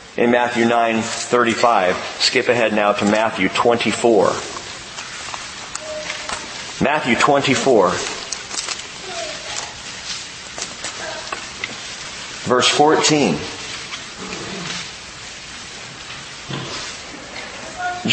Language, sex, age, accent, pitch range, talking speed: English, male, 40-59, American, 130-205 Hz, 45 wpm